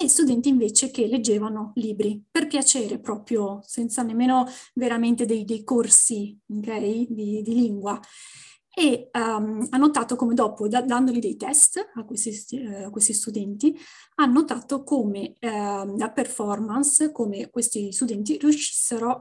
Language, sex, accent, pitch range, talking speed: Italian, female, native, 220-270 Hz, 135 wpm